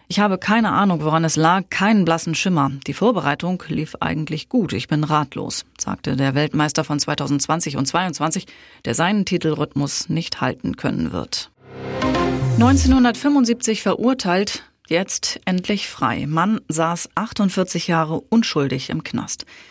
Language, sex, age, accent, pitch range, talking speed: German, female, 30-49, German, 140-175 Hz, 135 wpm